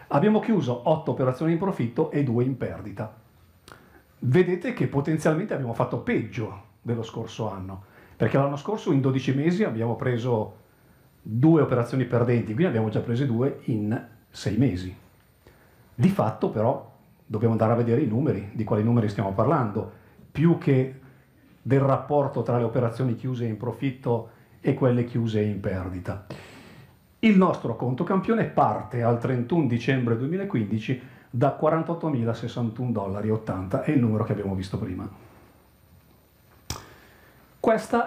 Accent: native